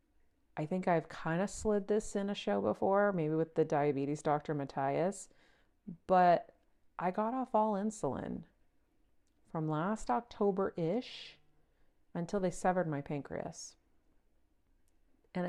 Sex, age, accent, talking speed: female, 40-59, American, 125 wpm